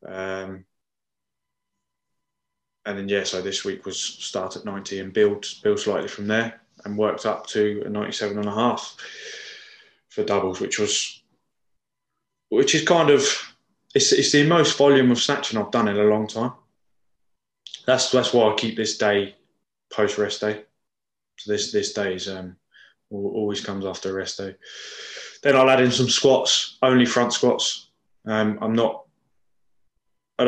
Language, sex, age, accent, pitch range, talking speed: English, male, 20-39, British, 100-125 Hz, 160 wpm